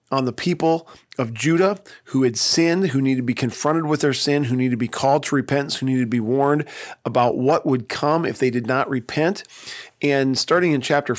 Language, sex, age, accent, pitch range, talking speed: English, male, 40-59, American, 120-145 Hz, 220 wpm